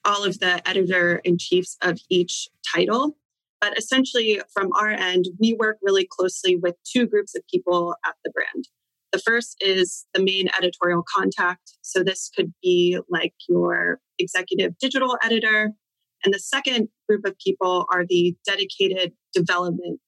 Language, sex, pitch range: English, female, 175-220 Hz